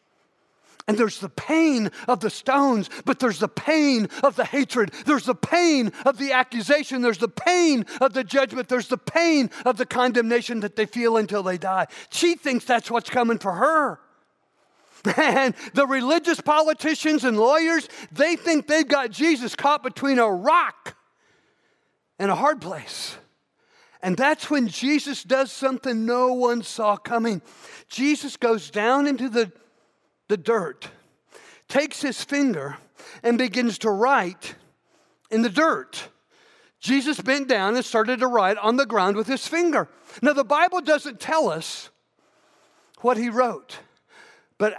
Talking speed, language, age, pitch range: 155 wpm, English, 50-69, 220-285 Hz